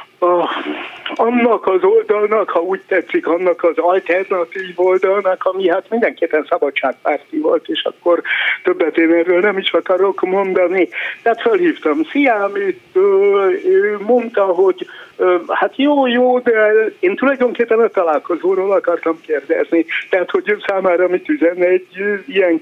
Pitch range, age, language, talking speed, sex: 175-250 Hz, 60-79, Hungarian, 125 wpm, male